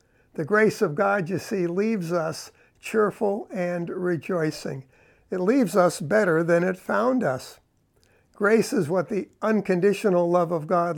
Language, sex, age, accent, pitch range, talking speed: English, male, 60-79, American, 160-210 Hz, 150 wpm